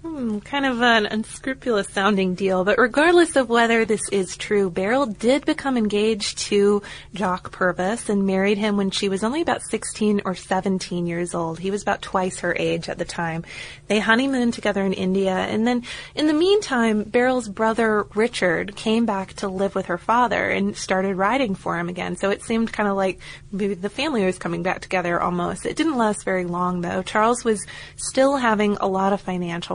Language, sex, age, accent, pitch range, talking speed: English, female, 20-39, American, 185-225 Hz, 195 wpm